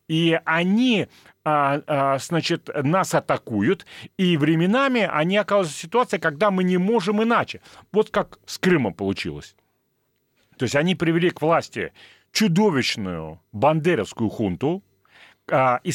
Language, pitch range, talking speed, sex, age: Russian, 125-185 Hz, 115 wpm, male, 40-59